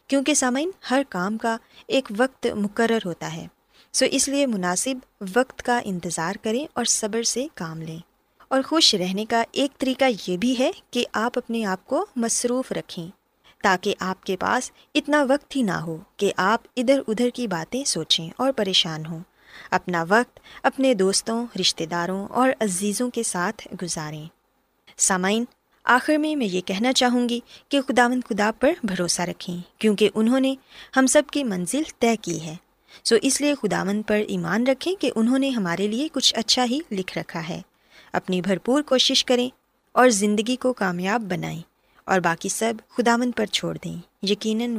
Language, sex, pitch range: Urdu, female, 190-260 Hz